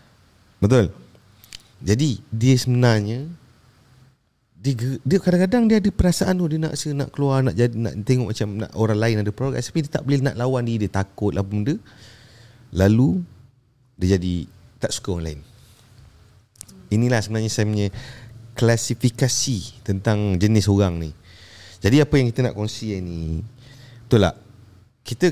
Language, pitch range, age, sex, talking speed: Indonesian, 100-125 Hz, 30-49, male, 135 wpm